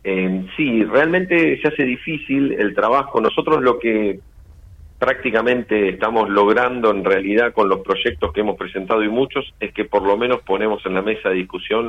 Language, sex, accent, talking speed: Italian, male, Argentinian, 175 wpm